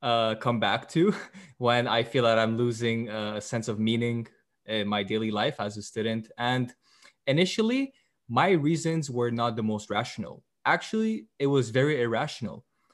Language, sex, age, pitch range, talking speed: English, male, 20-39, 110-135 Hz, 165 wpm